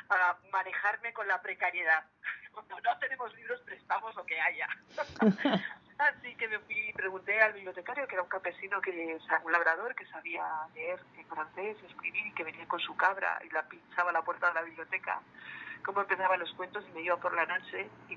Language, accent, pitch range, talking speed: Spanish, Spanish, 165-220 Hz, 200 wpm